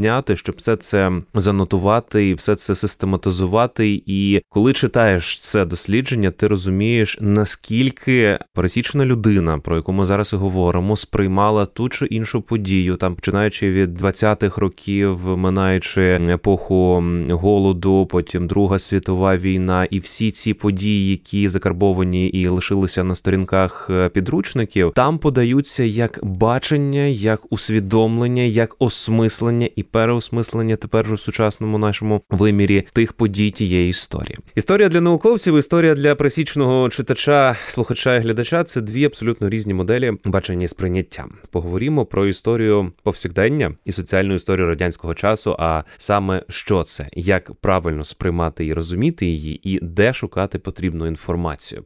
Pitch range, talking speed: 95-115 Hz, 130 wpm